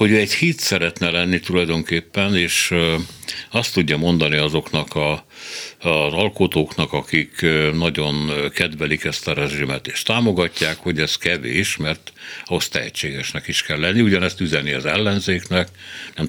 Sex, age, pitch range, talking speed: male, 60-79, 75-100 Hz, 135 wpm